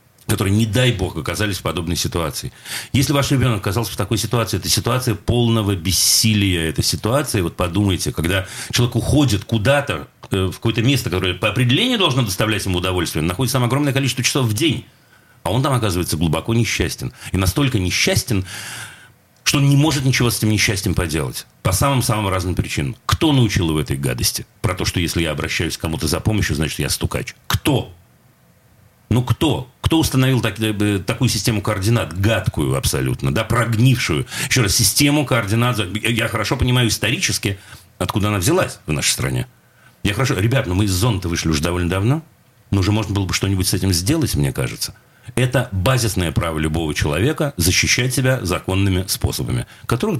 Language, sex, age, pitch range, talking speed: Russian, male, 40-59, 95-125 Hz, 170 wpm